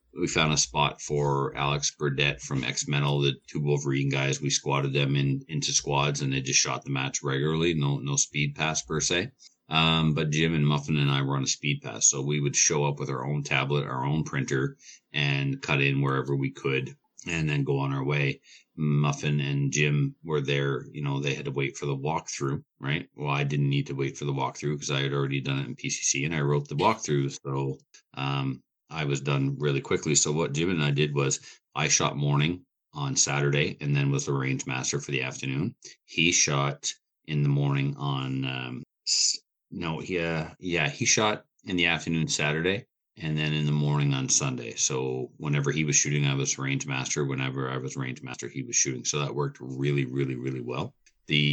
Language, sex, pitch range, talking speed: English, male, 70-75 Hz, 210 wpm